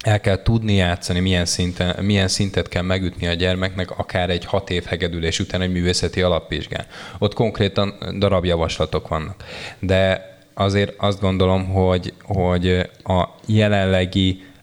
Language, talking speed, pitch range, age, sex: Hungarian, 140 wpm, 90-100 Hz, 20-39, male